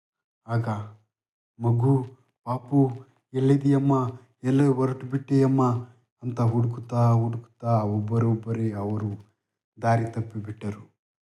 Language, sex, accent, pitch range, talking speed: Kannada, male, native, 110-120 Hz, 70 wpm